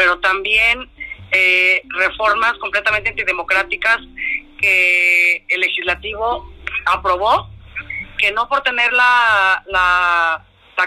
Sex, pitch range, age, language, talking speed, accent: female, 180-220 Hz, 30-49, Spanish, 95 wpm, Mexican